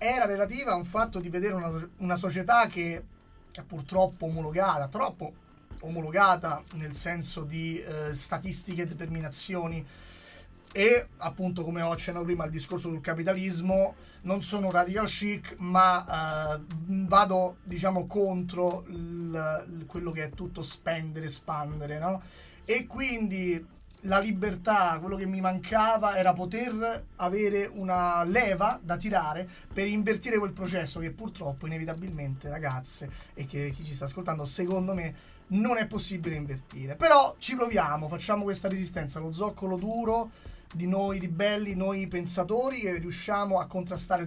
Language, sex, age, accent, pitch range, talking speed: Italian, male, 30-49, native, 160-195 Hz, 135 wpm